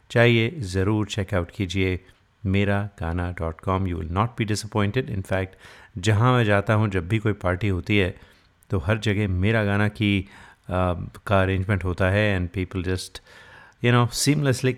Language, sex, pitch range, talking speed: Hindi, male, 95-110 Hz, 165 wpm